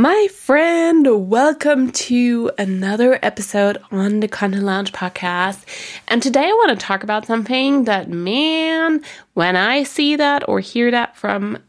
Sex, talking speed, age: female, 150 wpm, 20-39